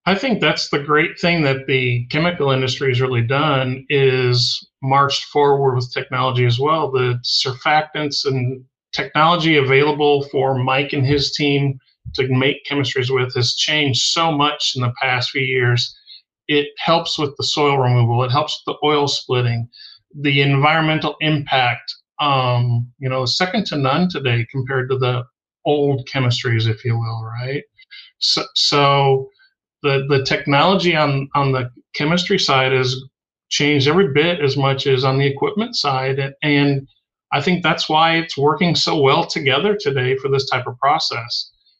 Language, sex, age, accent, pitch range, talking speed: English, male, 40-59, American, 130-150 Hz, 160 wpm